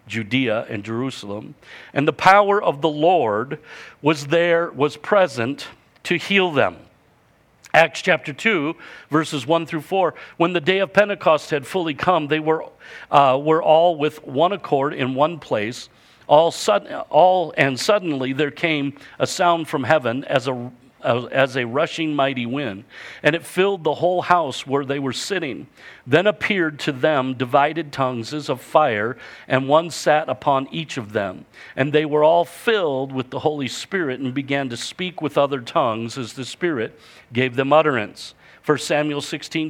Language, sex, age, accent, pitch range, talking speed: English, male, 50-69, American, 130-170 Hz, 170 wpm